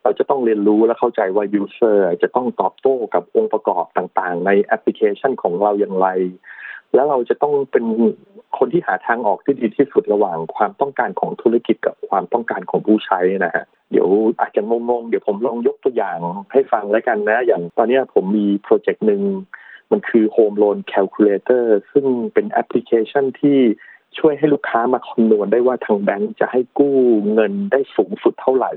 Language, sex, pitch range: Thai, male, 105-145 Hz